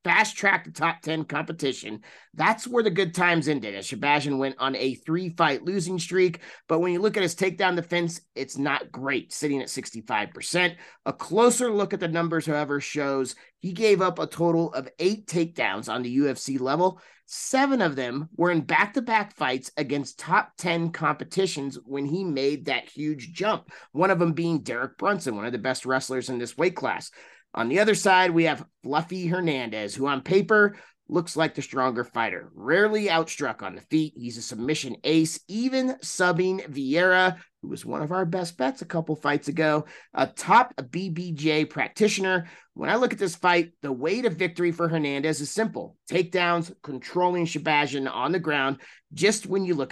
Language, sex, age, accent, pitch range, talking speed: English, male, 30-49, American, 140-180 Hz, 185 wpm